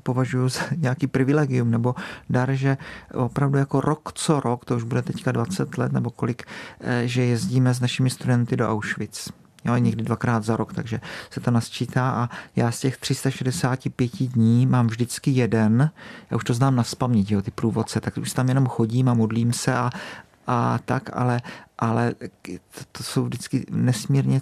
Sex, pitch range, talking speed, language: male, 115-130 Hz, 170 wpm, Czech